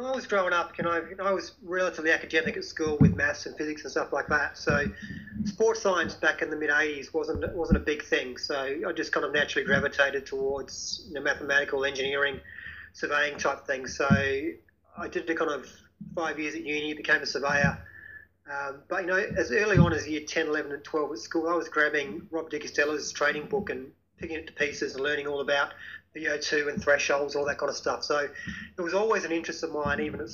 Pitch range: 145-195 Hz